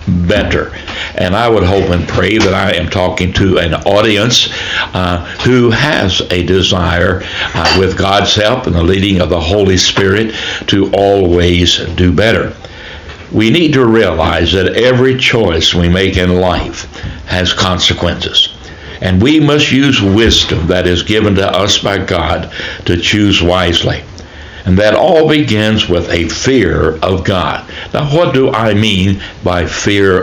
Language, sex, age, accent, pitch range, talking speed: English, male, 60-79, American, 85-105 Hz, 155 wpm